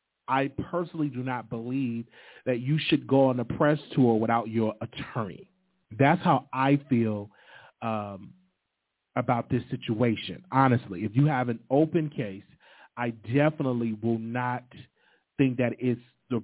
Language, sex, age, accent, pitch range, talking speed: English, male, 30-49, American, 115-135 Hz, 140 wpm